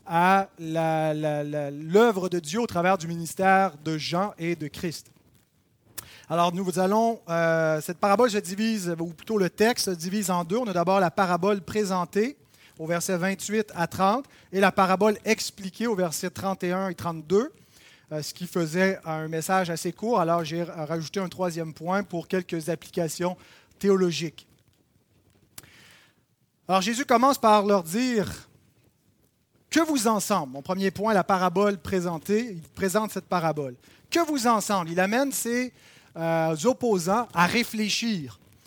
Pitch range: 170-215 Hz